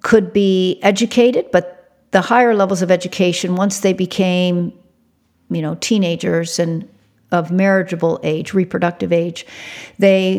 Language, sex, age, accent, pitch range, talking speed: English, female, 50-69, American, 175-205 Hz, 125 wpm